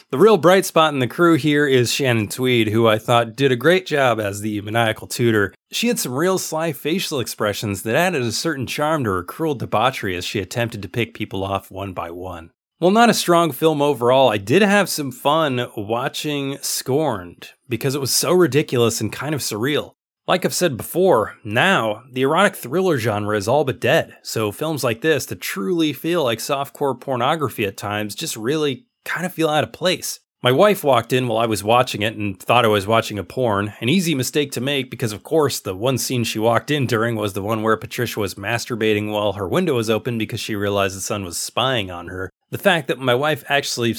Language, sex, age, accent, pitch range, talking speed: English, male, 30-49, American, 110-155 Hz, 220 wpm